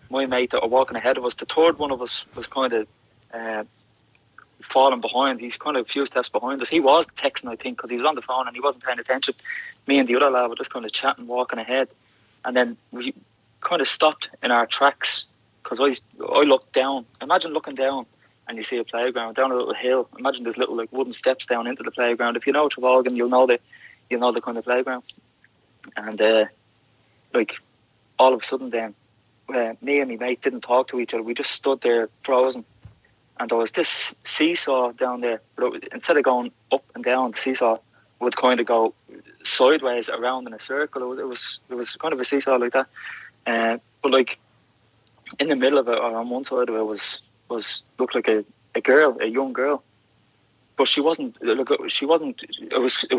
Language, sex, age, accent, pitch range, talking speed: English, male, 20-39, Irish, 115-135 Hz, 220 wpm